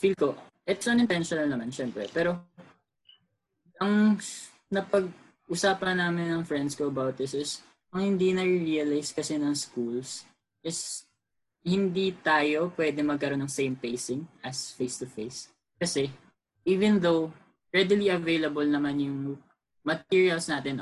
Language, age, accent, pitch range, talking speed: Filipino, 20-39, native, 130-170 Hz, 120 wpm